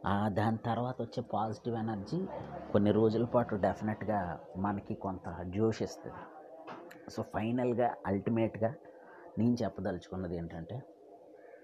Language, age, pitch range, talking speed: Telugu, 30-49, 105-125 Hz, 95 wpm